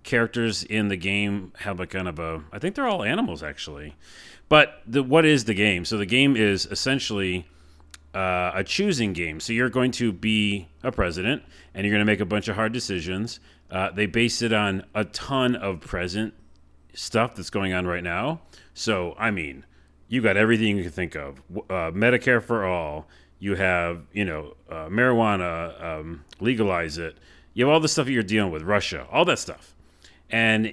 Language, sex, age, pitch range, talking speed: English, male, 30-49, 85-110 Hz, 190 wpm